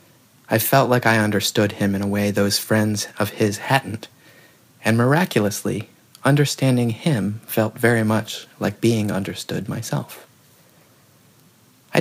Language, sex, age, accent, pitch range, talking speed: English, male, 30-49, American, 100-130 Hz, 130 wpm